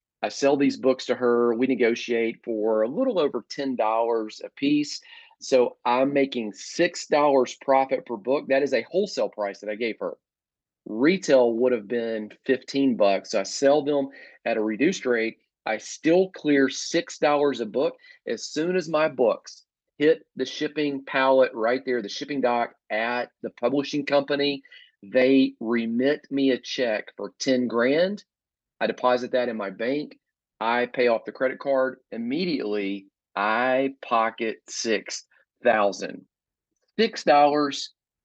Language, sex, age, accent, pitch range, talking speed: English, male, 40-59, American, 110-145 Hz, 145 wpm